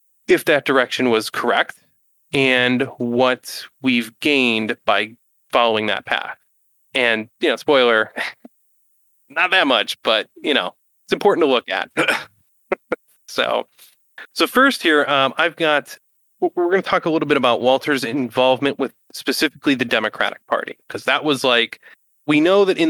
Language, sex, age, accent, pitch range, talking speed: English, male, 30-49, American, 120-170 Hz, 150 wpm